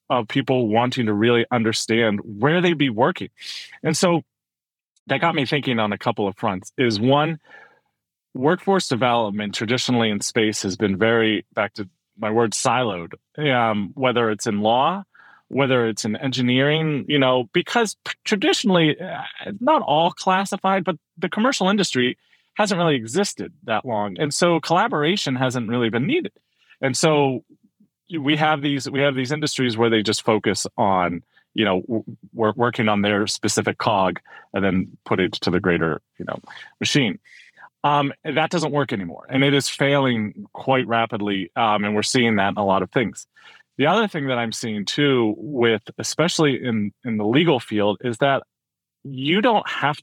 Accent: American